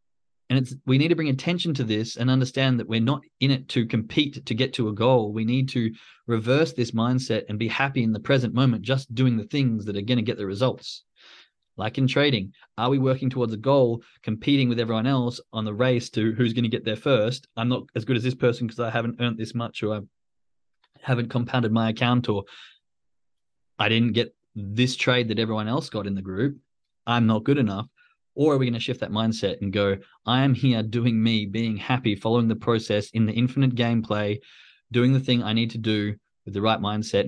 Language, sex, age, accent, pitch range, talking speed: English, male, 20-39, Australian, 110-130 Hz, 225 wpm